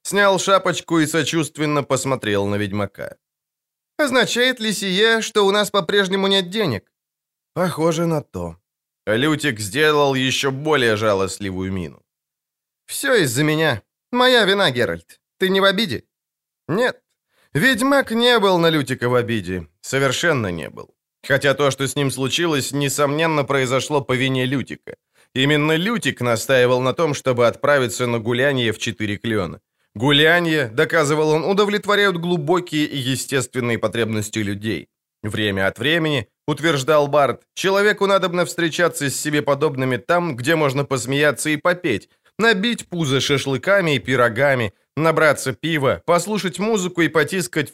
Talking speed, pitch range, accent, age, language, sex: 140 wpm, 120-170 Hz, native, 20-39, Ukrainian, male